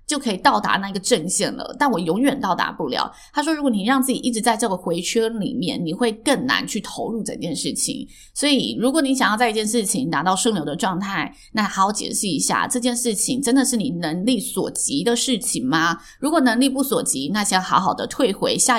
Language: Chinese